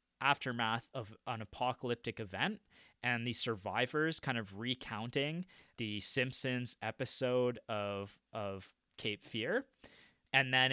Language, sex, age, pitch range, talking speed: English, male, 20-39, 105-130 Hz, 110 wpm